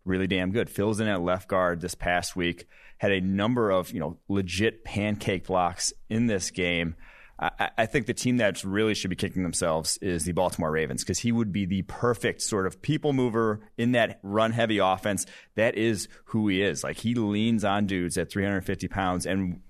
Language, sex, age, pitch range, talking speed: English, male, 30-49, 90-110 Hz, 205 wpm